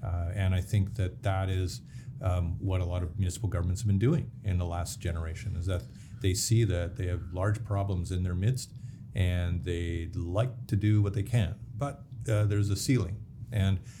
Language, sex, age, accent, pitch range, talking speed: English, male, 40-59, American, 95-115 Hz, 200 wpm